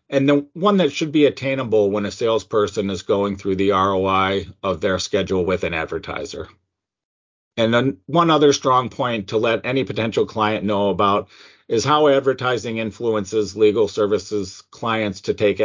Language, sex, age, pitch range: English, male, 50-69, 100-140 Hz